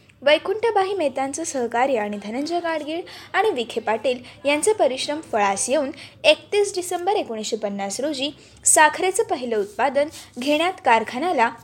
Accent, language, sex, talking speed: native, Marathi, female, 115 wpm